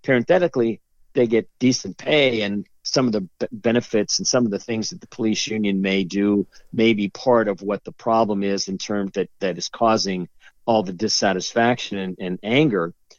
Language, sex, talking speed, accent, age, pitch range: English, male, 185 wpm, American, 50-69, 100-125 Hz